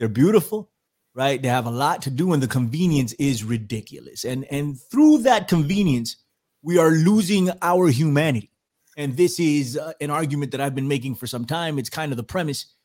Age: 30-49